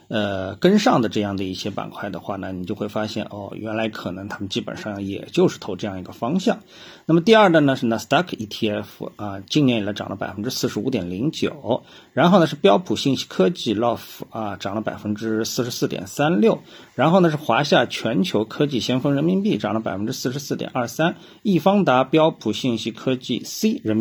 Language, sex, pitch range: Chinese, male, 105-140 Hz